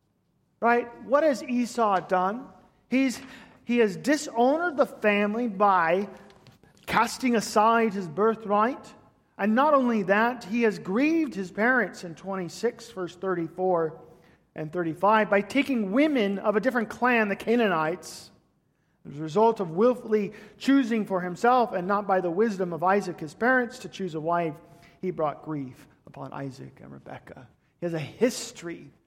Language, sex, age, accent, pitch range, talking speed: English, male, 40-59, American, 160-220 Hz, 150 wpm